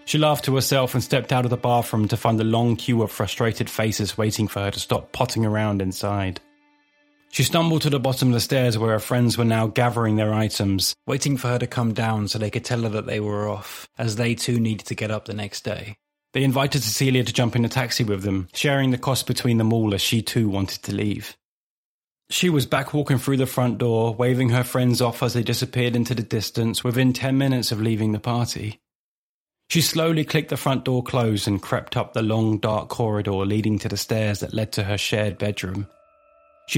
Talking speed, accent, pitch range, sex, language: 225 wpm, British, 110-130 Hz, male, English